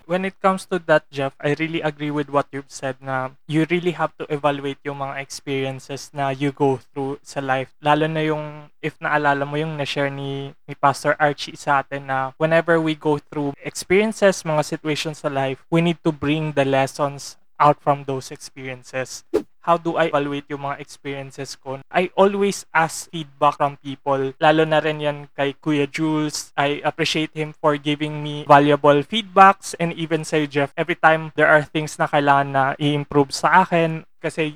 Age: 20-39